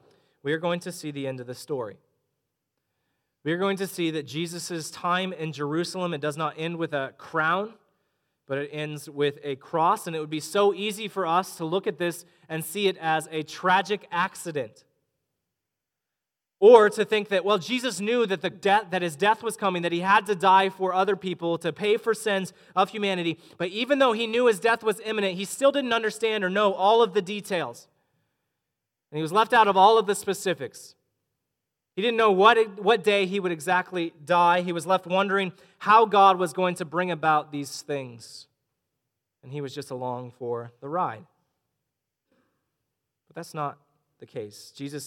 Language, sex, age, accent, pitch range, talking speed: English, male, 30-49, American, 140-195 Hz, 195 wpm